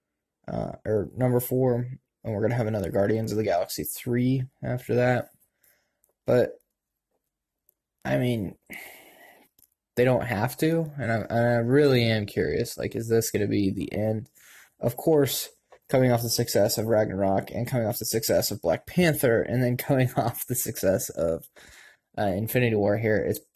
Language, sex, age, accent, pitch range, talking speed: English, male, 10-29, American, 110-125 Hz, 170 wpm